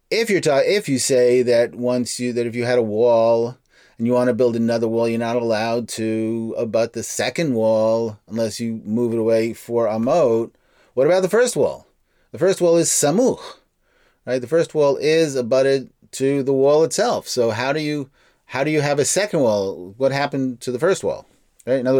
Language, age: English, 30-49